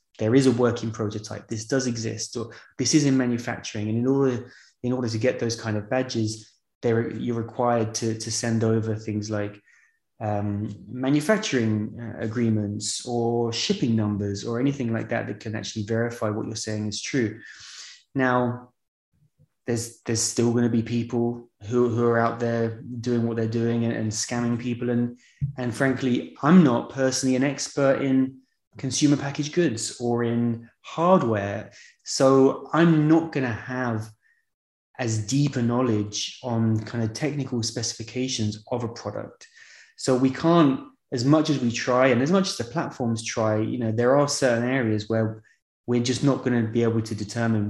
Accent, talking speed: British, 170 wpm